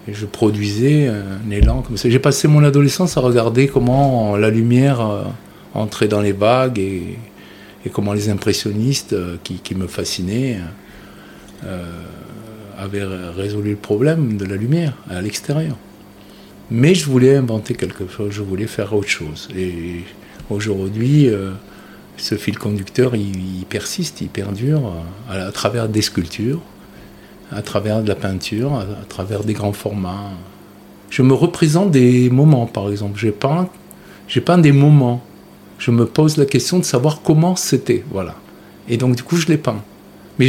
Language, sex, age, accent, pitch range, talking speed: French, male, 50-69, French, 100-135 Hz, 150 wpm